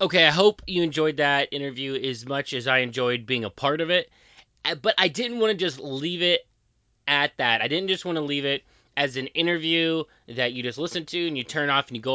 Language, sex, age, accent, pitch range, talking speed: English, male, 30-49, American, 125-165 Hz, 240 wpm